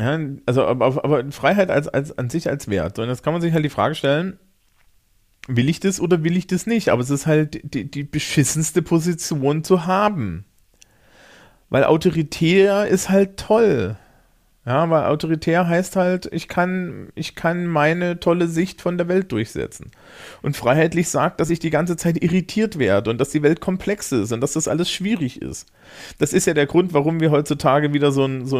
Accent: German